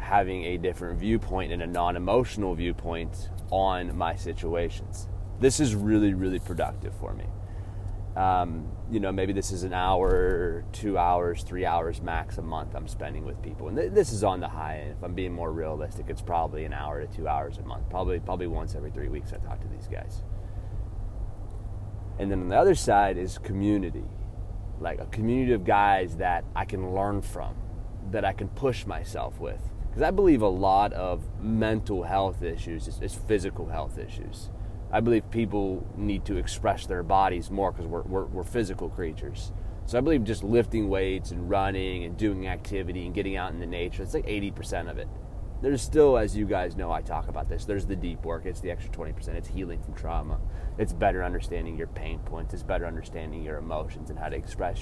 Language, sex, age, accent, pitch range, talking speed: English, male, 20-39, American, 85-100 Hz, 200 wpm